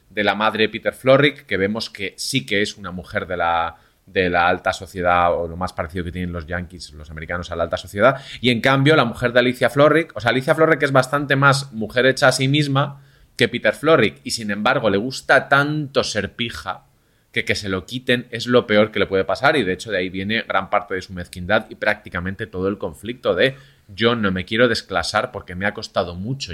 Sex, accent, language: male, Spanish, Spanish